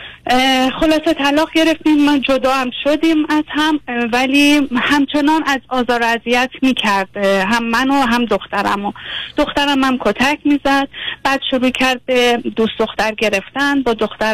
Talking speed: 140 wpm